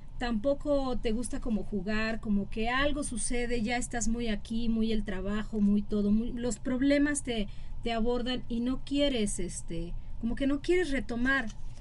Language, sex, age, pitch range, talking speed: Spanish, female, 30-49, 215-285 Hz, 170 wpm